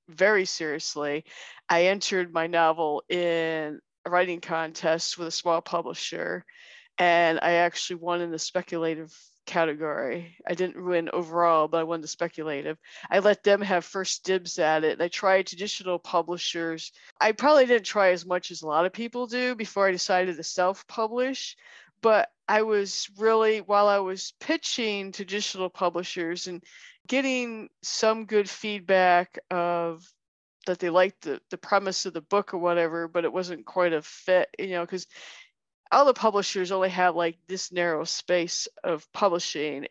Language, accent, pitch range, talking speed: English, American, 170-210 Hz, 160 wpm